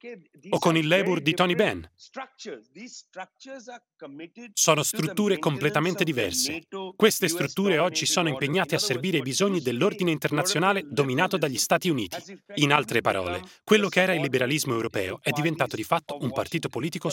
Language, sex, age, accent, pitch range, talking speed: Italian, male, 30-49, native, 150-195 Hz, 145 wpm